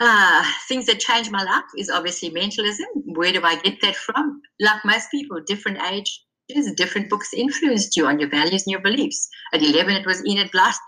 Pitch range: 175-235 Hz